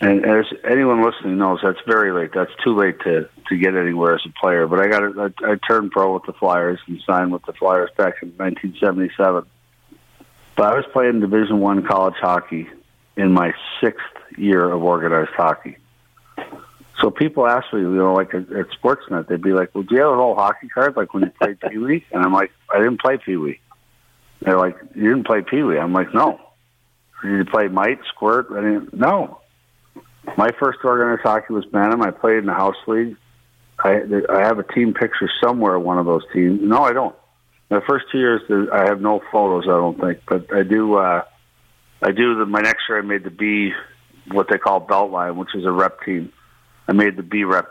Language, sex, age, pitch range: English, male, 50-69, 90-105 Hz